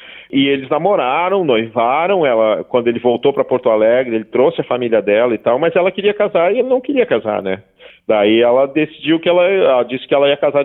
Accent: Brazilian